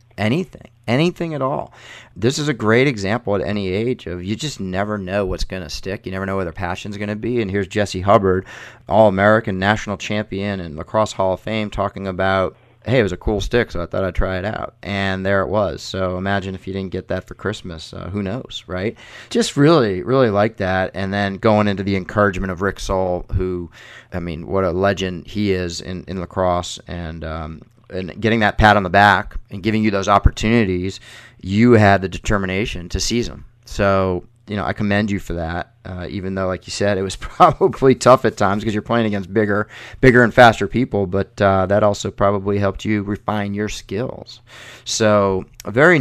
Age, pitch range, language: 30-49, 95-110 Hz, Spanish